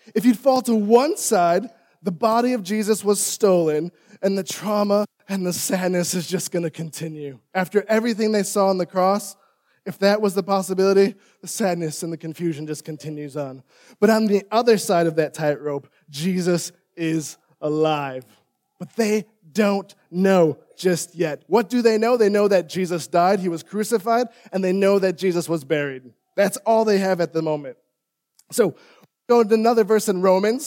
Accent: American